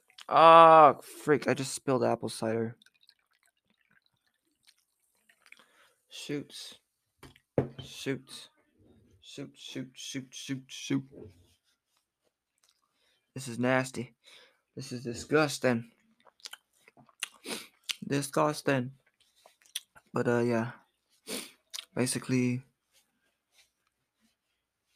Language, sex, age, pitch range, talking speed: French, male, 20-39, 120-145 Hz, 65 wpm